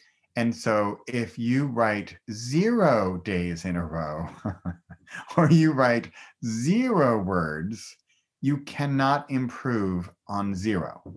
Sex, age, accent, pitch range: male, 30-49, American, 90-130 Hz